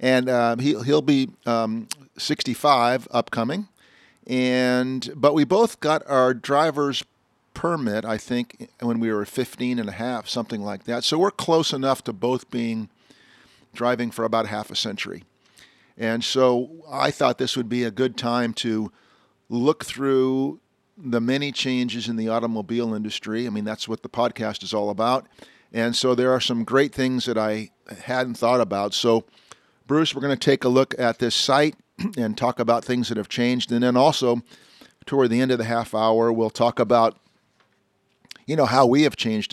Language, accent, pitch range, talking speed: English, American, 115-130 Hz, 180 wpm